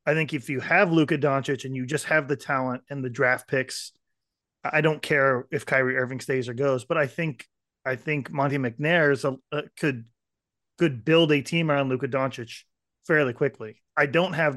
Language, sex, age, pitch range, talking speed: English, male, 30-49, 135-165 Hz, 200 wpm